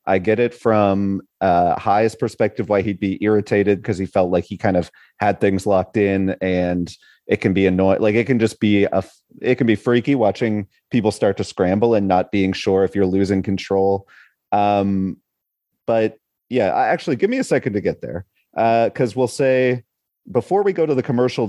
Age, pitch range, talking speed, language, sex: 30-49, 100-125 Hz, 205 wpm, English, male